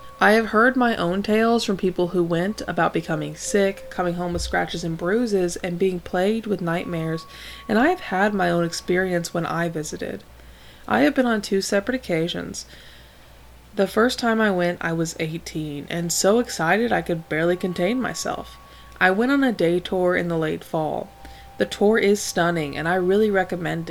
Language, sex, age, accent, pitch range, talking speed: English, female, 20-39, American, 170-225 Hz, 190 wpm